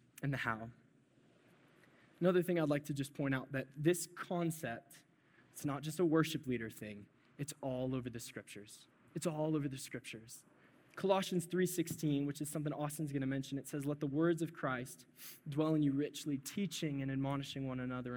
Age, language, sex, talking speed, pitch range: 20-39, English, male, 185 wpm, 135-165 Hz